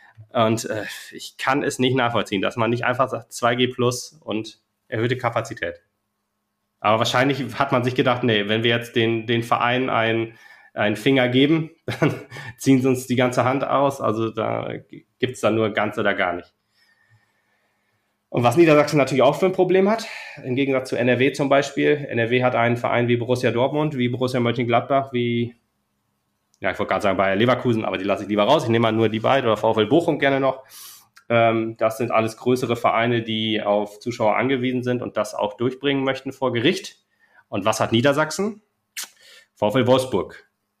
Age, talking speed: 30-49, 180 wpm